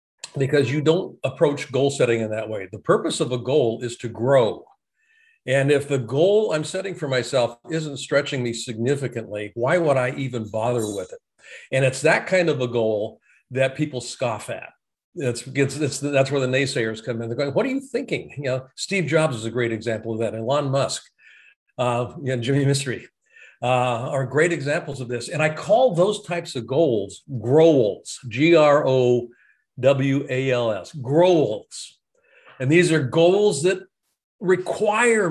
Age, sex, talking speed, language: 50-69, male, 180 wpm, English